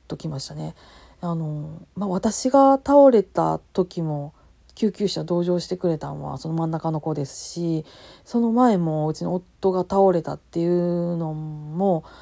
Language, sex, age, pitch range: Japanese, female, 40-59, 150-195 Hz